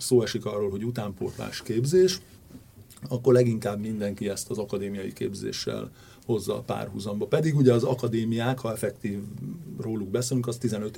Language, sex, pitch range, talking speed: Hungarian, male, 105-130 Hz, 140 wpm